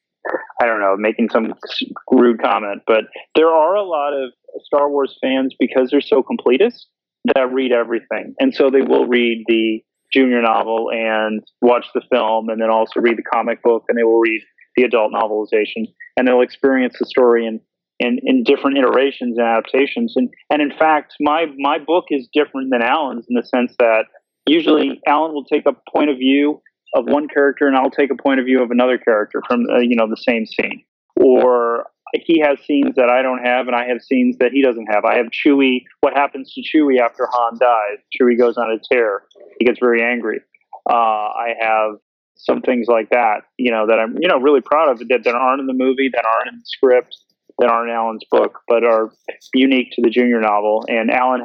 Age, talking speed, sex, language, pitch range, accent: 30-49, 210 wpm, male, English, 115-140 Hz, American